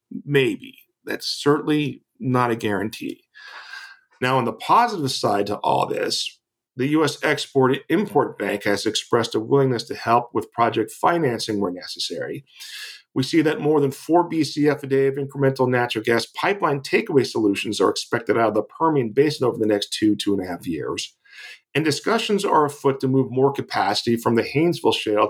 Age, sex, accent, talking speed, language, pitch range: 40-59, male, American, 175 wpm, English, 115-155 Hz